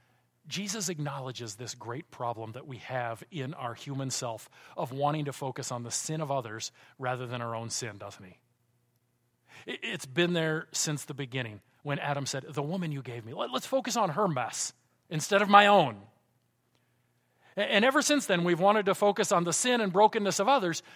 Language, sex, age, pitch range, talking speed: English, male, 40-59, 125-195 Hz, 190 wpm